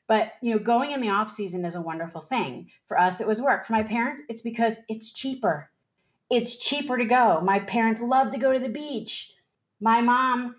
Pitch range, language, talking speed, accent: 180-240 Hz, English, 215 wpm, American